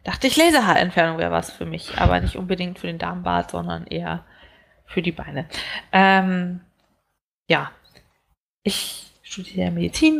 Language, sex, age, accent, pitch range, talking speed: German, female, 20-39, German, 180-230 Hz, 135 wpm